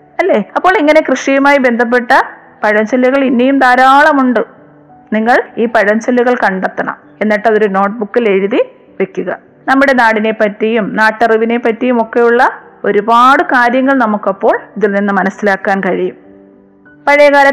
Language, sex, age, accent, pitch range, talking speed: Malayalam, female, 20-39, native, 205-250 Hz, 105 wpm